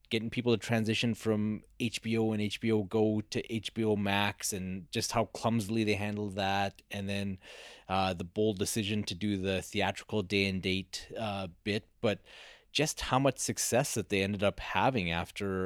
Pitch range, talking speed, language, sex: 95-110 Hz, 170 wpm, English, male